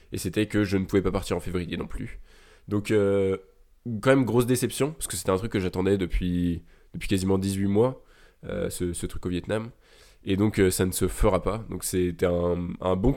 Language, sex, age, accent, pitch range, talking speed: French, male, 20-39, French, 90-105 Hz, 220 wpm